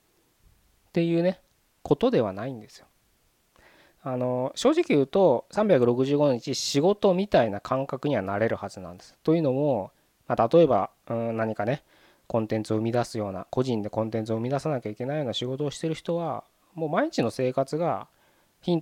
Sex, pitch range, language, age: male, 105-155 Hz, Japanese, 20-39